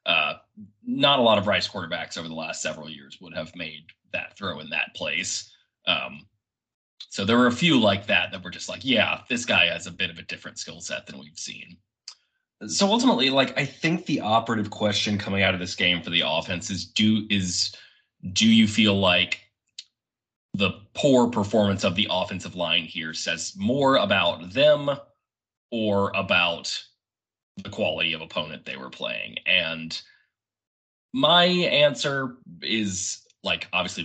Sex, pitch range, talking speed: male, 85-120 Hz, 170 wpm